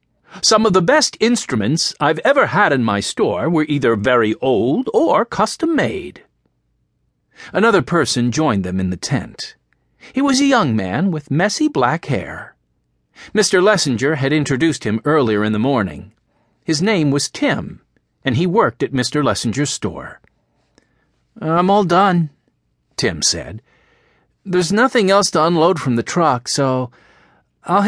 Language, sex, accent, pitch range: English, male, American, 120-200 Hz